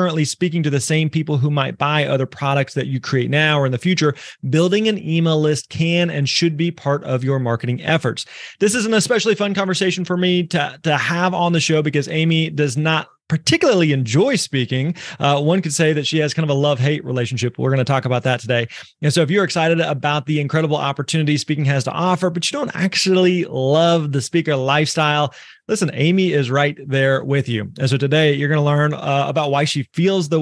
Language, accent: English, American